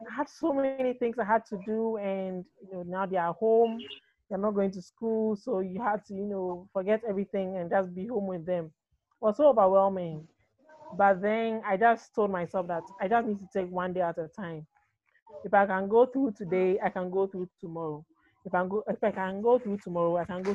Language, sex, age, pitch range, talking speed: English, male, 30-49, 185-230 Hz, 230 wpm